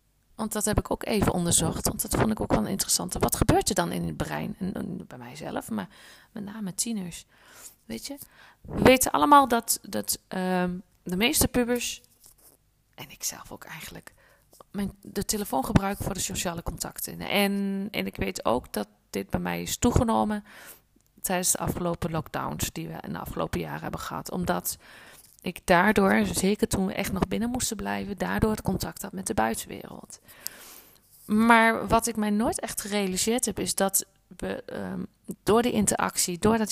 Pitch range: 175-215 Hz